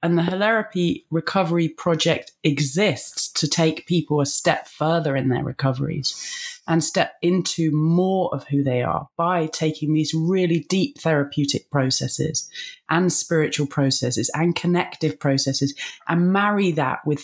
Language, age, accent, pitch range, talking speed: English, 30-49, British, 150-180 Hz, 140 wpm